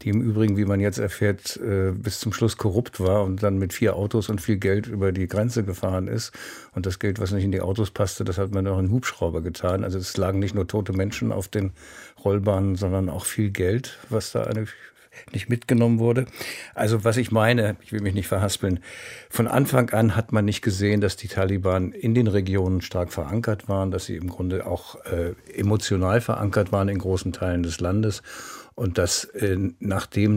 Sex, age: male, 60-79